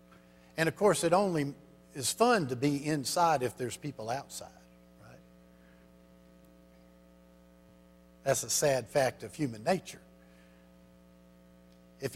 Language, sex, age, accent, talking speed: English, male, 60-79, American, 115 wpm